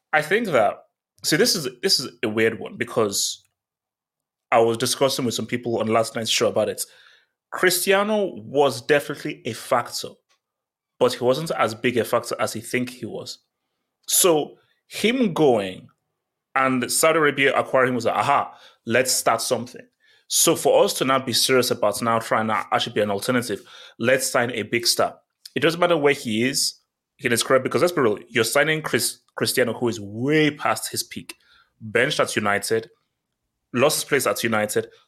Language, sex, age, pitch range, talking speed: English, male, 20-39, 115-145 Hz, 180 wpm